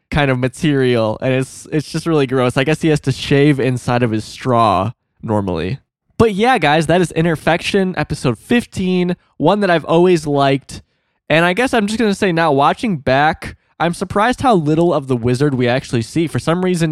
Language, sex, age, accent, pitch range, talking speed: English, male, 20-39, American, 115-155 Hz, 200 wpm